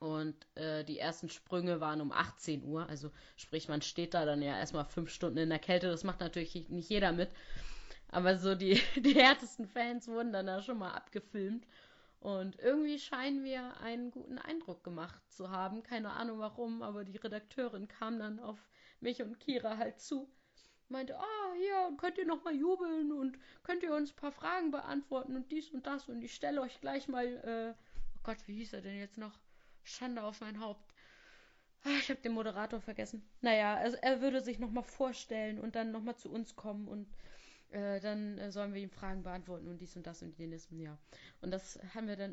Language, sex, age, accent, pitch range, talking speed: German, female, 30-49, German, 185-250 Hz, 200 wpm